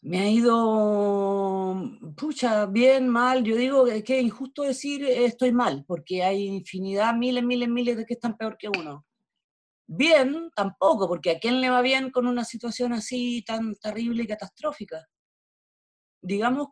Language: Spanish